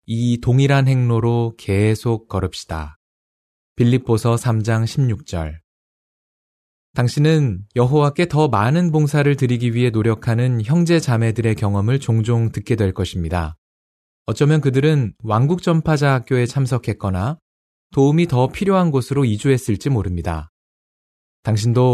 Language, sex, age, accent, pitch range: Korean, male, 20-39, native, 95-140 Hz